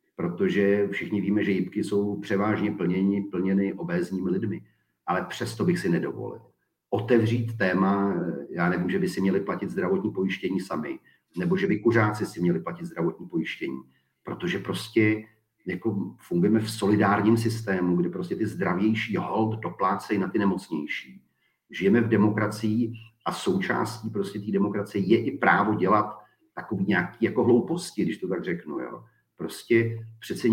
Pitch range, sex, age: 100-115 Hz, male, 40-59